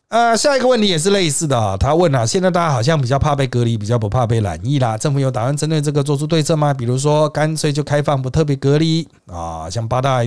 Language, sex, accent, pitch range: Chinese, male, native, 120-165 Hz